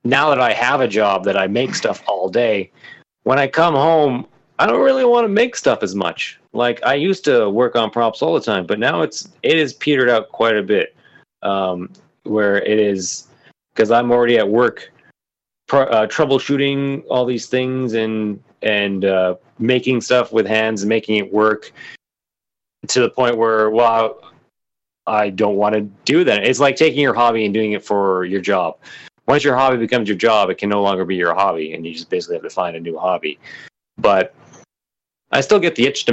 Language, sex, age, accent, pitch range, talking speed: English, male, 30-49, American, 100-120 Hz, 205 wpm